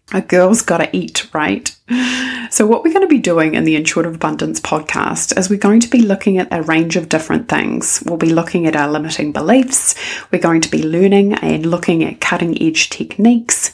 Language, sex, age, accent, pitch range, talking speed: English, female, 30-49, Australian, 160-200 Hz, 210 wpm